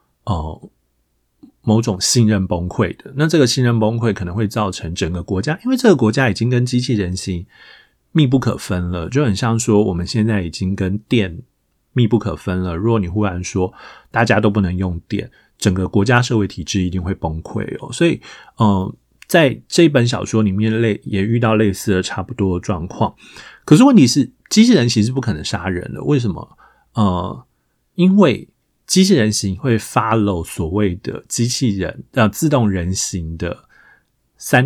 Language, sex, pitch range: Chinese, male, 95-125 Hz